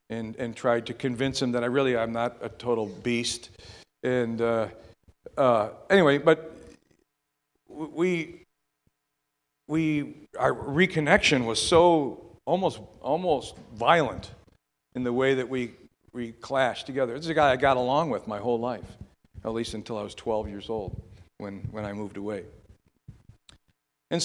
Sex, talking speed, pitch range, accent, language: male, 150 wpm, 120-155 Hz, American, English